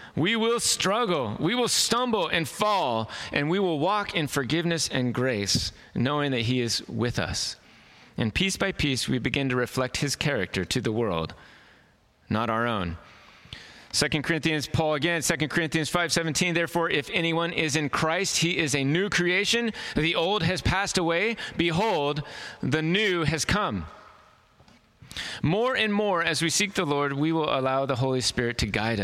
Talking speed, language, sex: 170 wpm, English, male